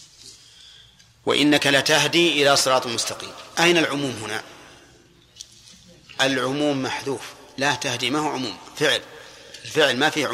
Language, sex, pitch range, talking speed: Arabic, male, 130-150 Hz, 115 wpm